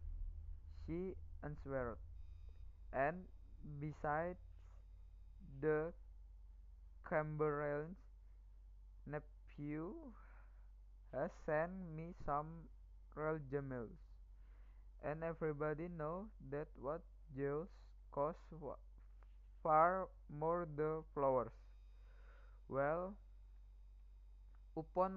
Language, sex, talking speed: Indonesian, male, 60 wpm